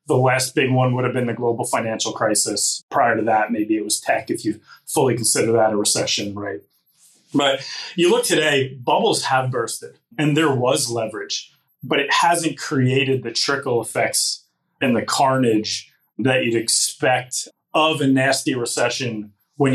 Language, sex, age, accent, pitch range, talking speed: English, male, 30-49, American, 120-155 Hz, 165 wpm